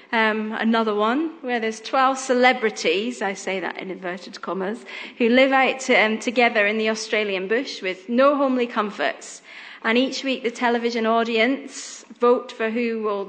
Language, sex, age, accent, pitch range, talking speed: English, female, 30-49, British, 215-265 Hz, 165 wpm